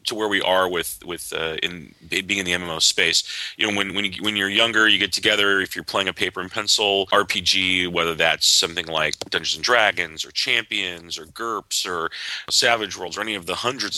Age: 40-59